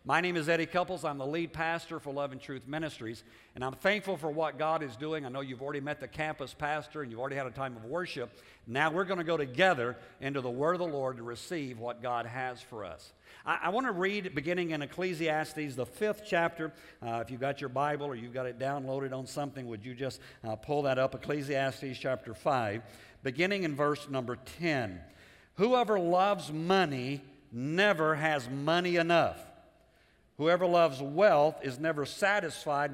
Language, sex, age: English, male, 50-69